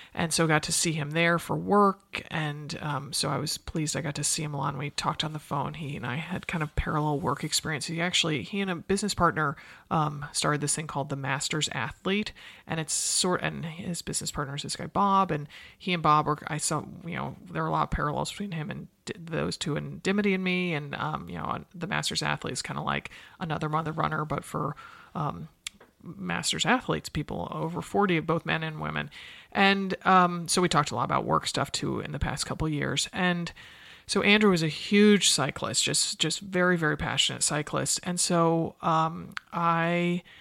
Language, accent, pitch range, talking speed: English, American, 150-180 Hz, 220 wpm